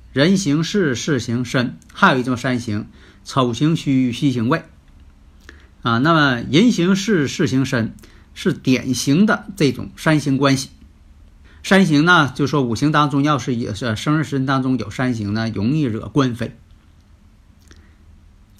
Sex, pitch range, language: male, 105-160 Hz, Chinese